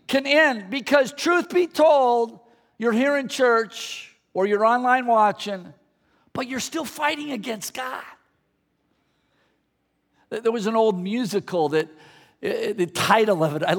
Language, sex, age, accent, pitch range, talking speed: English, male, 50-69, American, 190-255 Hz, 135 wpm